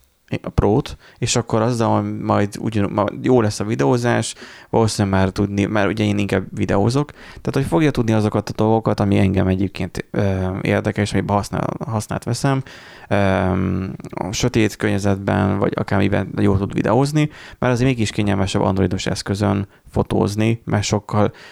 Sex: male